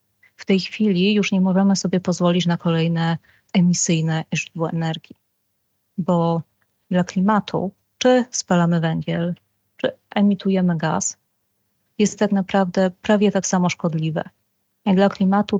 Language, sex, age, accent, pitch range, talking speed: Polish, female, 30-49, native, 165-195 Hz, 120 wpm